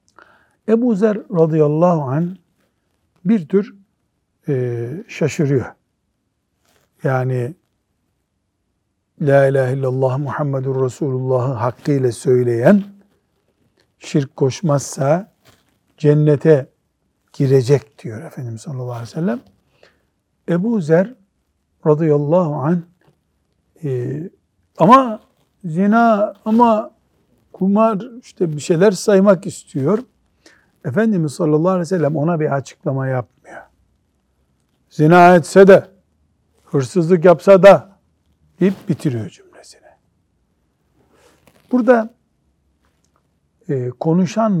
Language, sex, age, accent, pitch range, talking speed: Turkish, male, 60-79, native, 130-185 Hz, 80 wpm